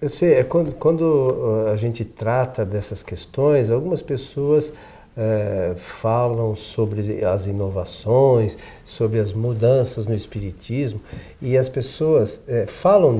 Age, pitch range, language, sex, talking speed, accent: 60-79, 110-170 Hz, Portuguese, male, 105 wpm, Brazilian